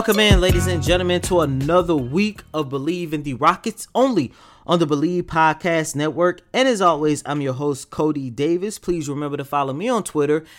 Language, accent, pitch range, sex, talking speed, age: English, American, 140-190 Hz, male, 195 wpm, 20-39